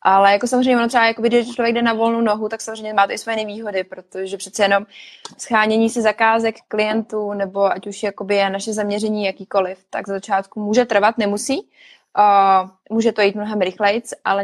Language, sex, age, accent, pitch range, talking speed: Czech, female, 20-39, native, 200-225 Hz, 185 wpm